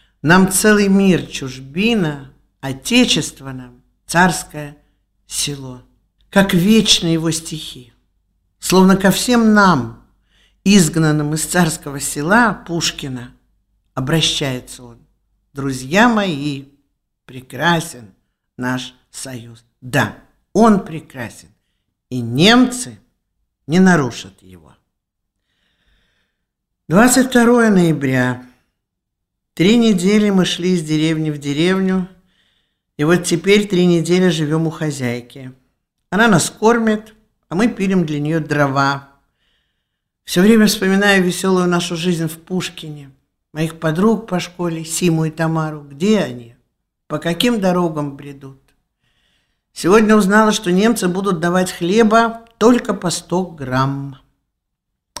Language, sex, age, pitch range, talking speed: Russian, male, 50-69, 130-190 Hz, 105 wpm